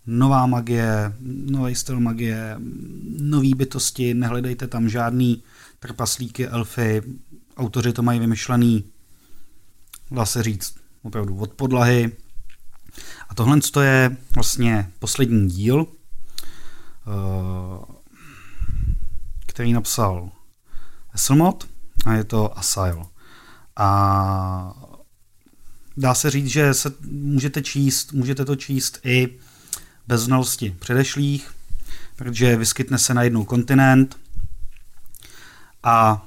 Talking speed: 95 wpm